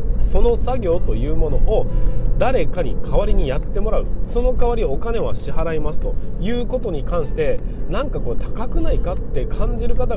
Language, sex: Japanese, male